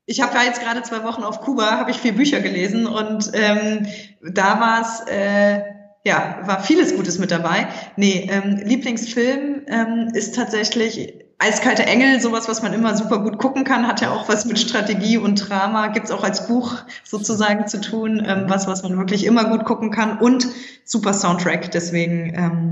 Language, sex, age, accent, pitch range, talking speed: English, female, 20-39, German, 190-230 Hz, 190 wpm